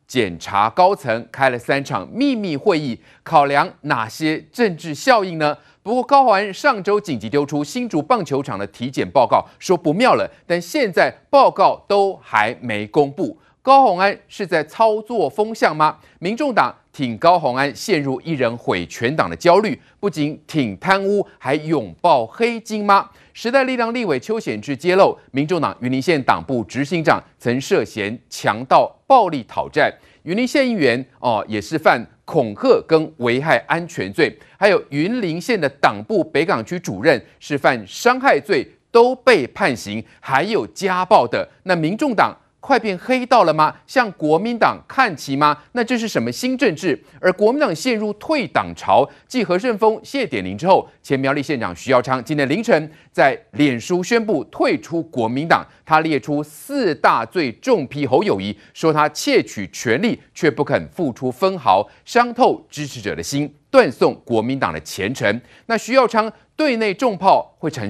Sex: male